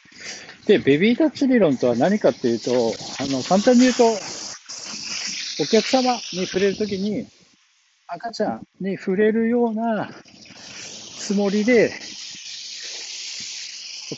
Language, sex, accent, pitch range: Japanese, male, native, 135-205 Hz